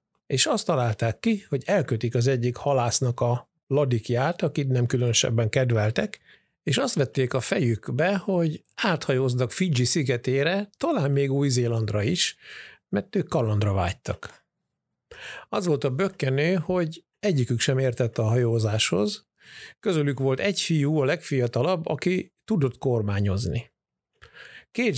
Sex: male